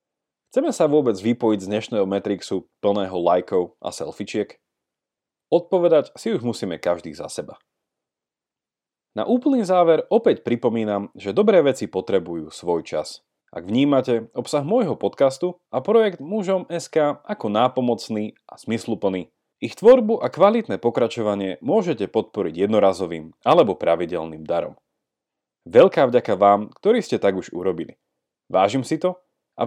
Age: 30-49